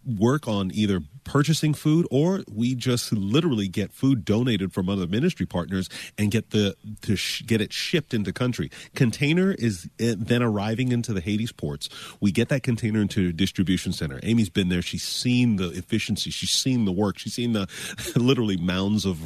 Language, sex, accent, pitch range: English, male, American, 90-115 Hz